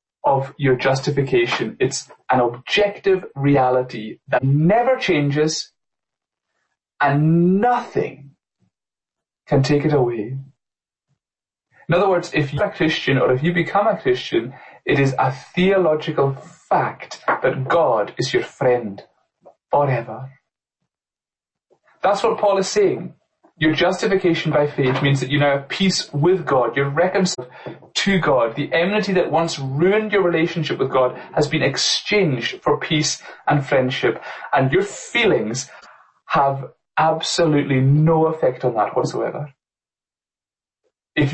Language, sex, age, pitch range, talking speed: English, male, 30-49, 135-180 Hz, 130 wpm